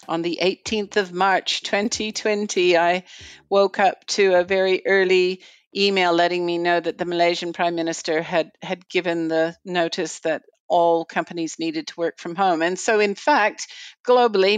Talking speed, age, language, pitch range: 165 wpm, 50-69, English, 170-205 Hz